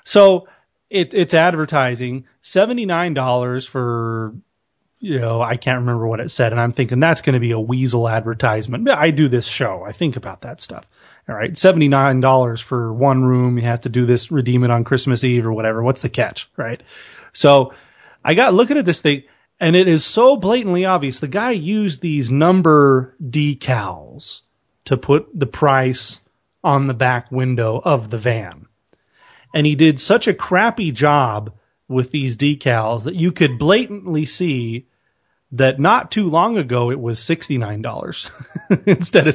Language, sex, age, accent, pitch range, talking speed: English, male, 30-49, American, 125-175 Hz, 170 wpm